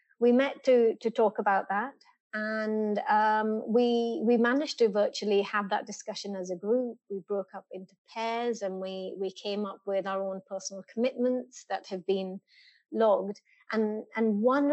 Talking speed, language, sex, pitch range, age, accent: 170 wpm, English, female, 200-240 Hz, 30-49, British